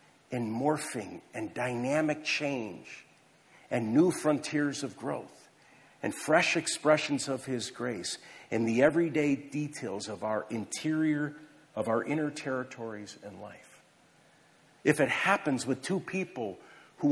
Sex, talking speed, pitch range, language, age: male, 130 wpm, 115-155 Hz, English, 50-69